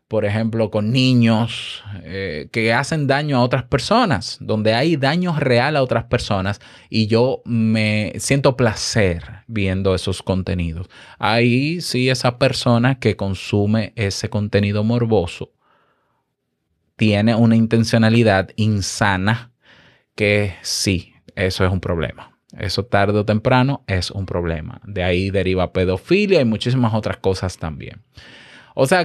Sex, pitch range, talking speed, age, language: male, 105-140 Hz, 130 wpm, 20-39, Spanish